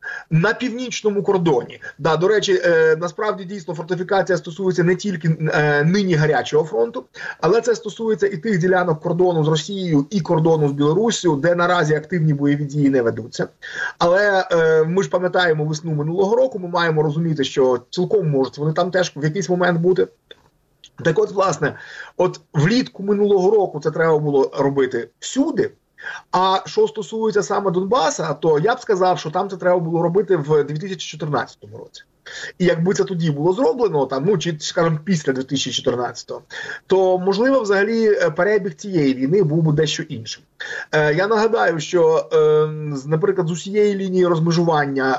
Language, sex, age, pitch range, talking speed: Ukrainian, male, 30-49, 155-200 Hz, 160 wpm